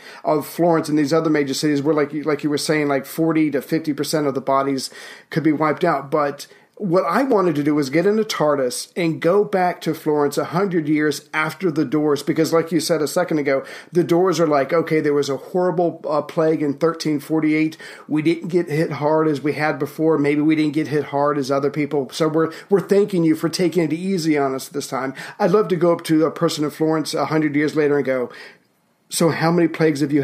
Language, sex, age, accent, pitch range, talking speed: English, male, 40-59, American, 145-165 Hz, 230 wpm